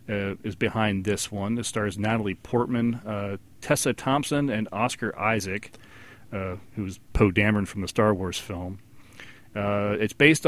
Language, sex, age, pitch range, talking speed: English, male, 40-59, 105-125 Hz, 155 wpm